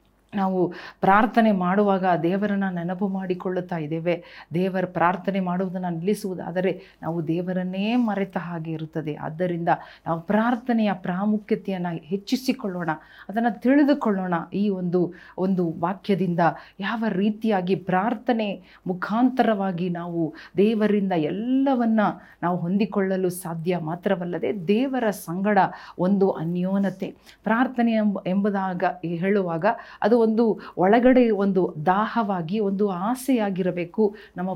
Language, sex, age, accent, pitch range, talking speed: Kannada, female, 40-59, native, 180-215 Hz, 90 wpm